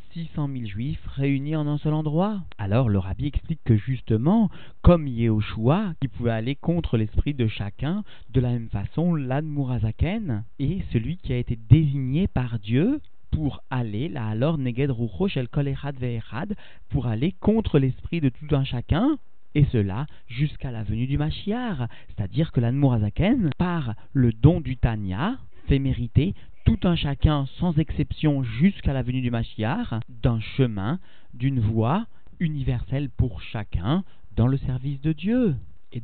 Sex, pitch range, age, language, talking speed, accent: male, 110-145 Hz, 40-59, French, 150 wpm, French